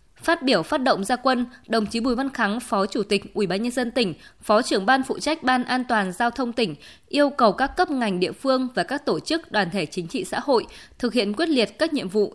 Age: 20-39